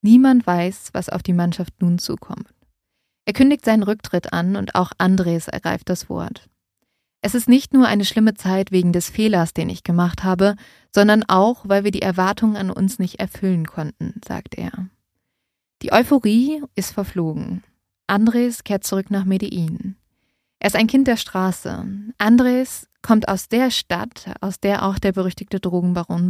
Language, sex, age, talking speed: German, female, 20-39, 165 wpm